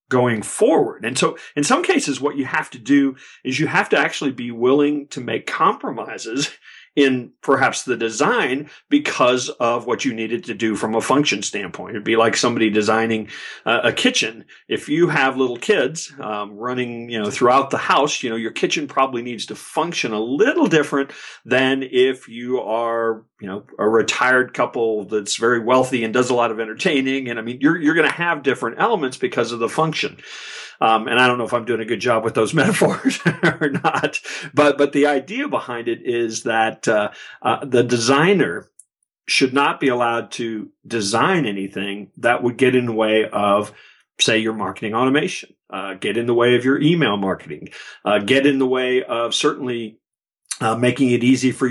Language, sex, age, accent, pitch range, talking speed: English, male, 40-59, American, 115-140 Hz, 195 wpm